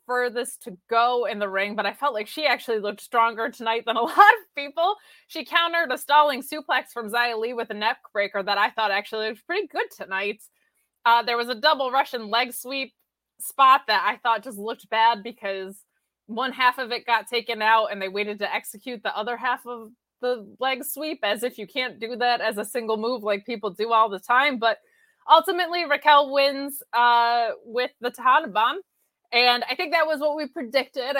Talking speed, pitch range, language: 205 wpm, 210-265 Hz, English